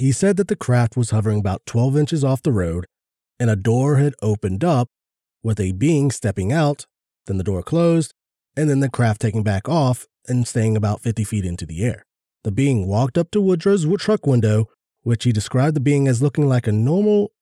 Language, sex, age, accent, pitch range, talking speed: English, male, 30-49, American, 105-140 Hz, 210 wpm